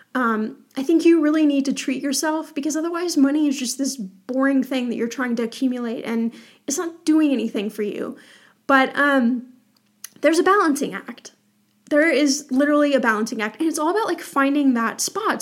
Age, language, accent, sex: 10-29, English, American, female